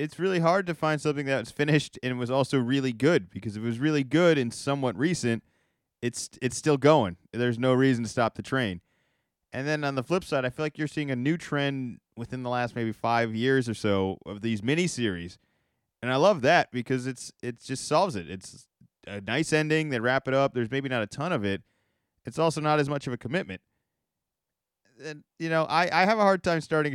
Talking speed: 225 wpm